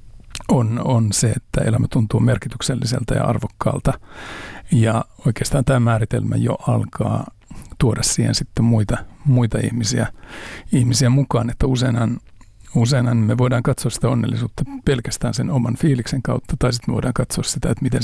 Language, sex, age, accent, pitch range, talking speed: Finnish, male, 60-79, native, 120-140 Hz, 145 wpm